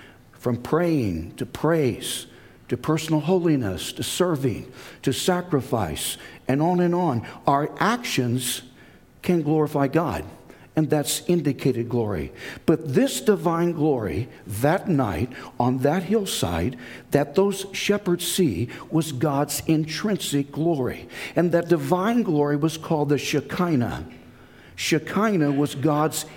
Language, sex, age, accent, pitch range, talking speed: English, male, 60-79, American, 125-170 Hz, 120 wpm